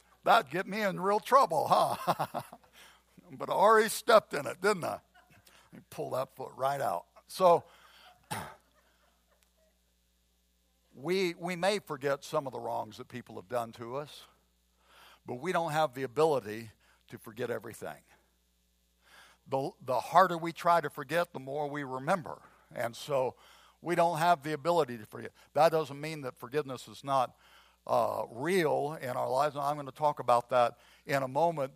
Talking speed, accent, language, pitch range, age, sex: 170 wpm, American, English, 140-190 Hz, 60-79, male